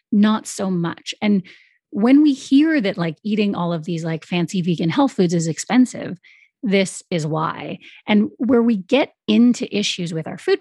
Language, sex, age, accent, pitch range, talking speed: English, female, 30-49, American, 170-215 Hz, 180 wpm